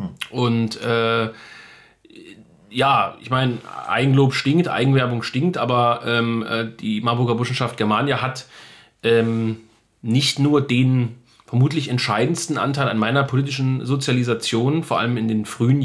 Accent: German